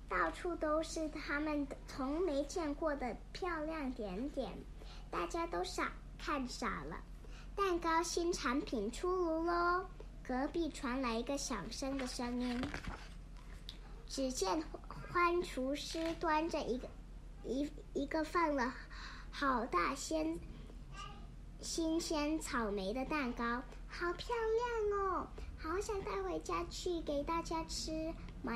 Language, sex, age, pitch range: English, male, 40-59, 215-320 Hz